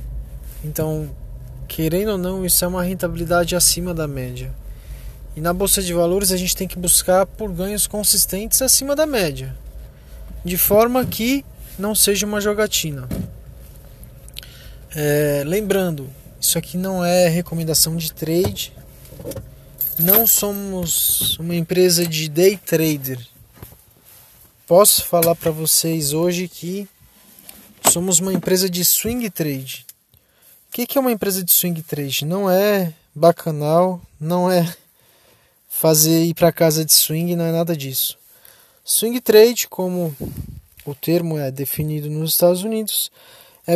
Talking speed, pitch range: 130 wpm, 155-195 Hz